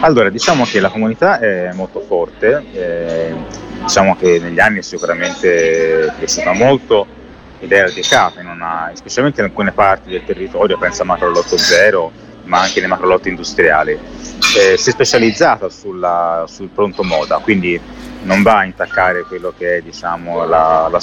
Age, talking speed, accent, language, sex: 30-49, 160 wpm, native, Italian, male